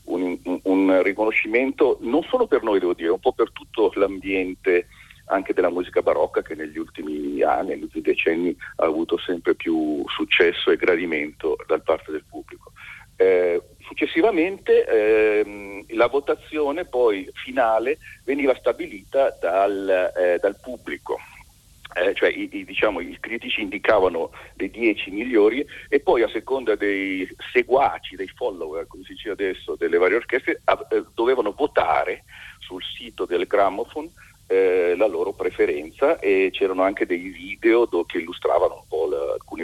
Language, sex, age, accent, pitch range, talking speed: Italian, male, 50-69, native, 320-445 Hz, 145 wpm